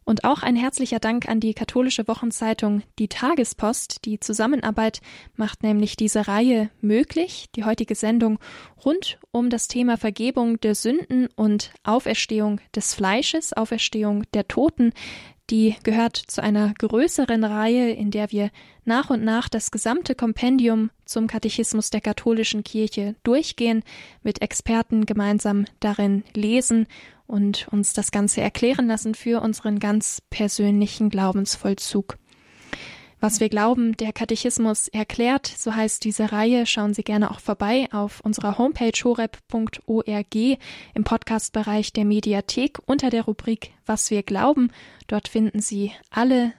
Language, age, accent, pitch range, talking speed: German, 10-29, German, 210-235 Hz, 135 wpm